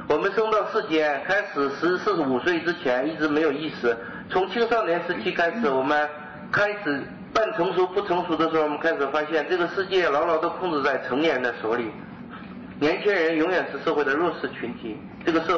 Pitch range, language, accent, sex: 145-185 Hz, Chinese, native, male